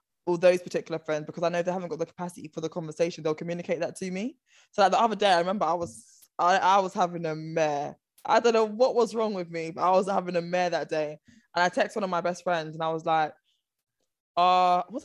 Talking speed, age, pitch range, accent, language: 260 wpm, 20-39, 170-210 Hz, British, English